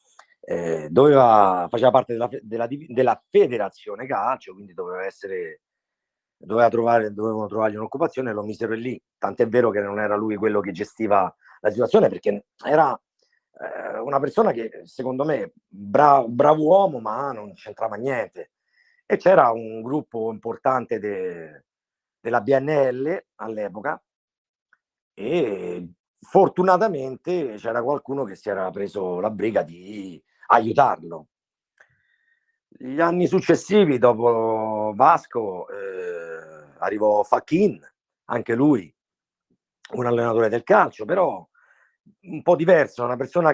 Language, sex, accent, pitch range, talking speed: Italian, male, native, 105-180 Hz, 120 wpm